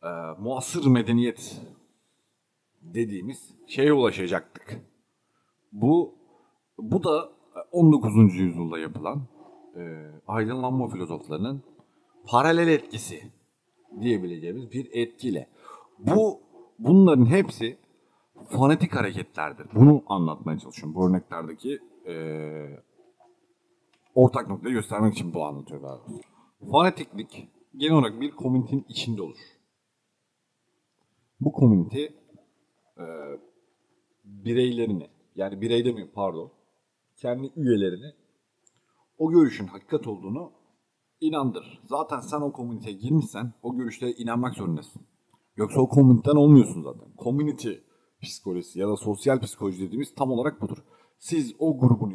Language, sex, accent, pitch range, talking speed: Turkish, male, native, 100-145 Hz, 100 wpm